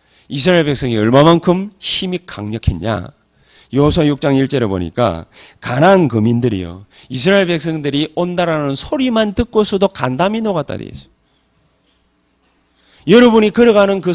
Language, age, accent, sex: Korean, 40-59, native, male